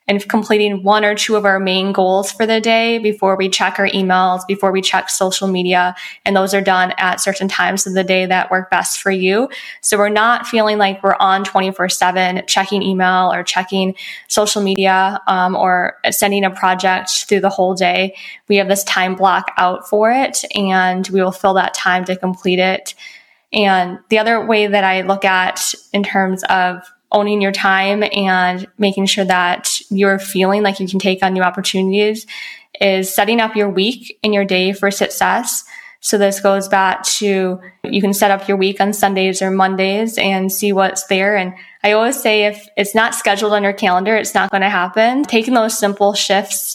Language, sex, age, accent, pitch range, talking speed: English, female, 10-29, American, 185-205 Hz, 195 wpm